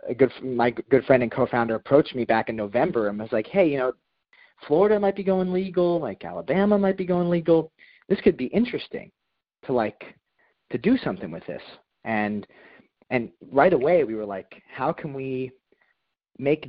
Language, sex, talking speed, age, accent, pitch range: English, male, 185 wpm, 30-49, American, 110-145 Hz